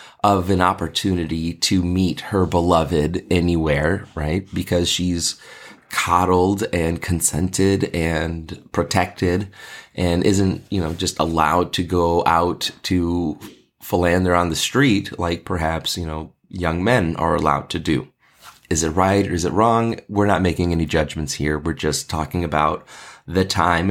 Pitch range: 85-100 Hz